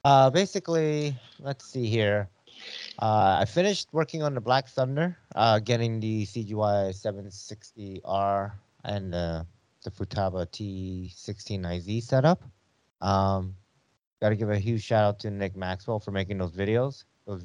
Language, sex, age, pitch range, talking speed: English, male, 30-49, 100-130 Hz, 130 wpm